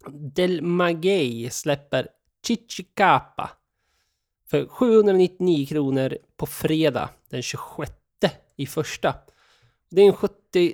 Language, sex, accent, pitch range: Swedish, male, native, 140-180 Hz